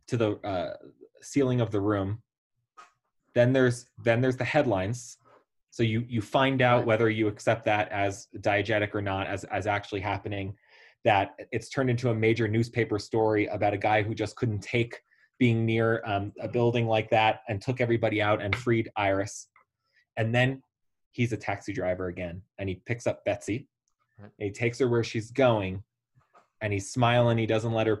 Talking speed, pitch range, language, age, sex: 180 wpm, 100-120 Hz, English, 20-39, male